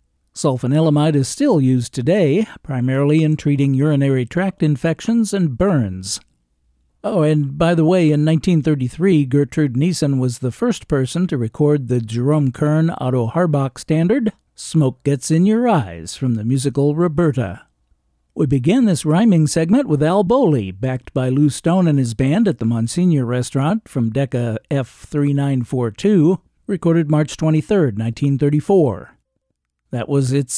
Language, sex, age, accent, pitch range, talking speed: English, male, 60-79, American, 125-170 Hz, 140 wpm